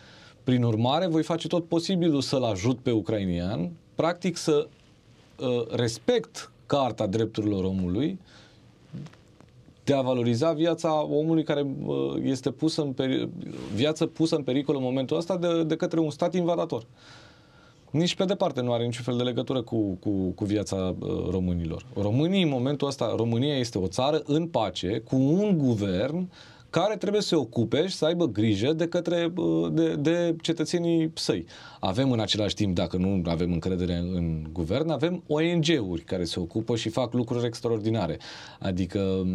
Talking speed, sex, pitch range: 160 wpm, male, 100-160 Hz